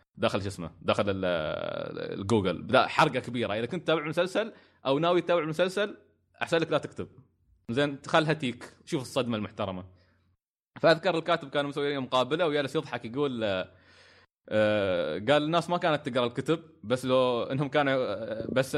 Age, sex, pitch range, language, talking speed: 20-39, male, 110-150 Hz, Arabic, 140 wpm